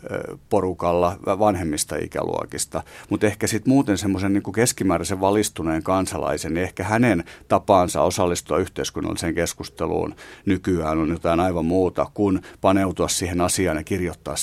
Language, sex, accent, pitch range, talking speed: Finnish, male, native, 85-95 Hz, 120 wpm